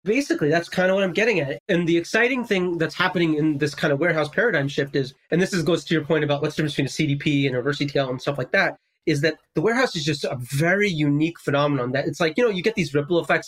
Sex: male